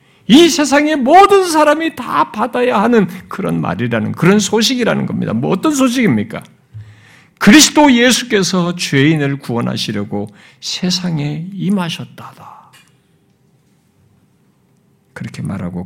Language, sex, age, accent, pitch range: Korean, male, 50-69, native, 115-185 Hz